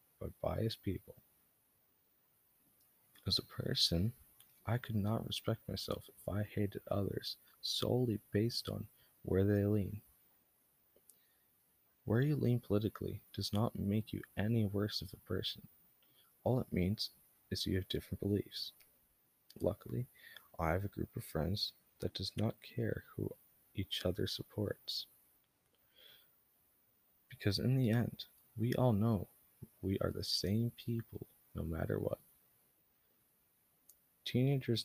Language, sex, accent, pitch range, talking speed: English, male, American, 95-115 Hz, 125 wpm